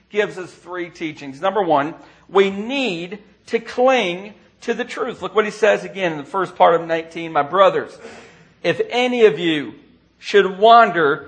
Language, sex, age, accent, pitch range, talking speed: English, male, 40-59, American, 190-250 Hz, 170 wpm